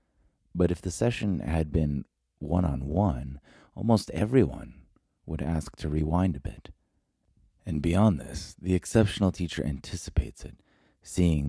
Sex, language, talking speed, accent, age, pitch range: male, English, 125 wpm, American, 30-49, 70-85 Hz